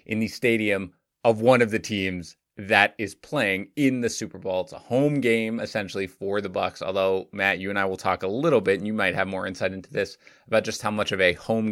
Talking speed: 245 wpm